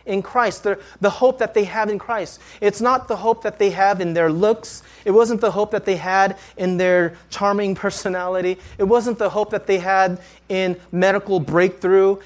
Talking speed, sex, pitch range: 200 wpm, male, 125-200 Hz